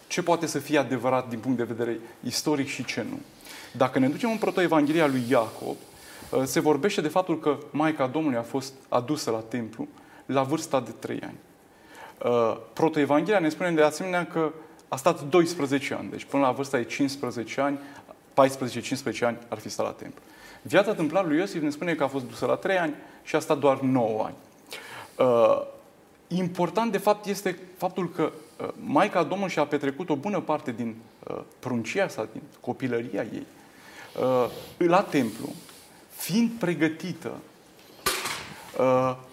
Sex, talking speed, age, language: male, 160 wpm, 30-49, Romanian